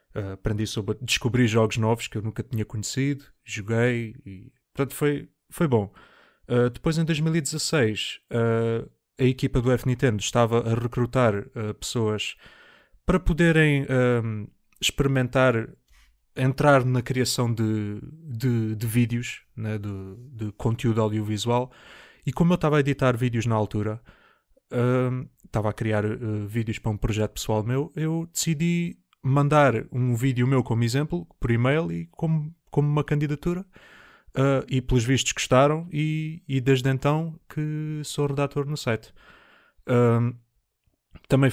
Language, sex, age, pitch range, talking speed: Portuguese, male, 20-39, 110-140 Hz, 140 wpm